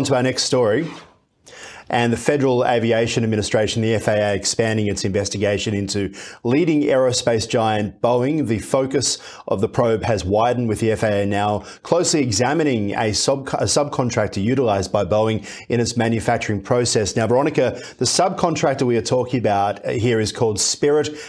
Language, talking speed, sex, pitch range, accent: English, 150 wpm, male, 105-130 Hz, Australian